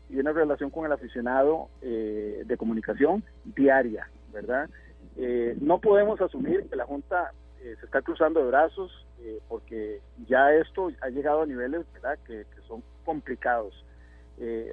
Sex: male